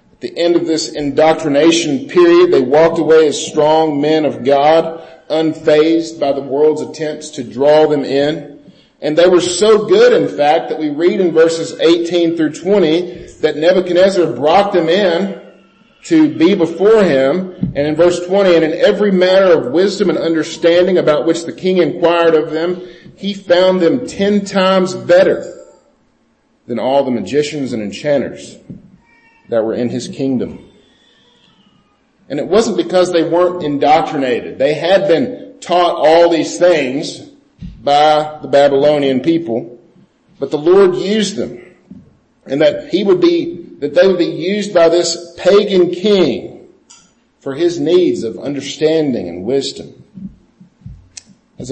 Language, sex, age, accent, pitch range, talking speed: English, male, 40-59, American, 150-190 Hz, 150 wpm